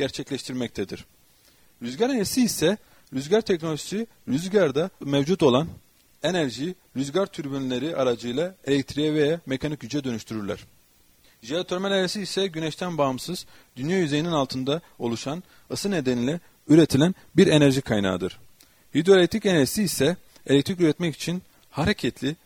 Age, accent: 40-59, native